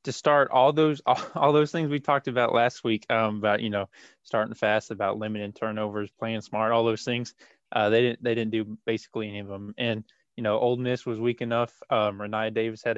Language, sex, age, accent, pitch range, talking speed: English, male, 20-39, American, 110-120 Hz, 225 wpm